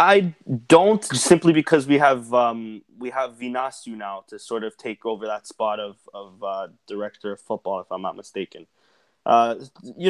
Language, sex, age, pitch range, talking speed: English, male, 20-39, 110-130 Hz, 170 wpm